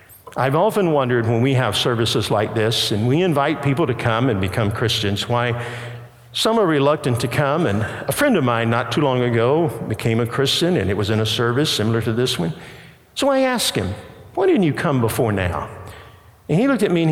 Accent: American